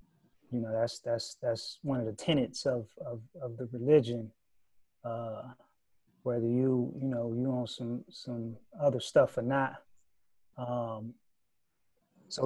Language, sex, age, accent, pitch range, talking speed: English, male, 30-49, American, 120-140 Hz, 140 wpm